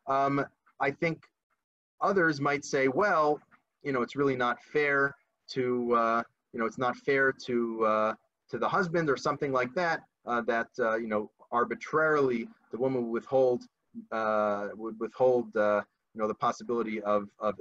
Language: English